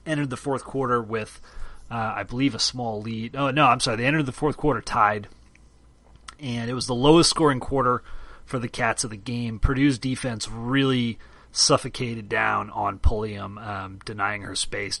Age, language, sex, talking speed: 30-49, English, male, 180 wpm